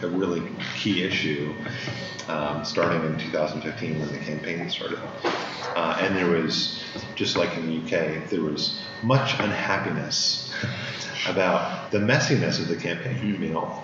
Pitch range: 80-105 Hz